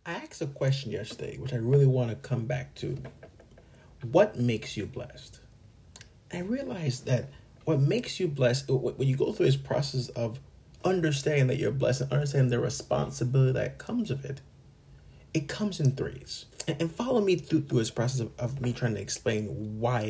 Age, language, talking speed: 30-49, English, 185 wpm